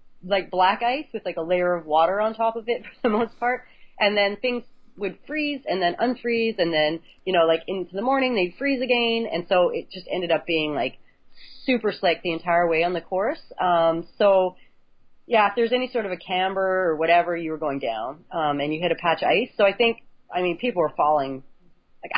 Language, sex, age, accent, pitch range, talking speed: English, female, 30-49, American, 175-225 Hz, 230 wpm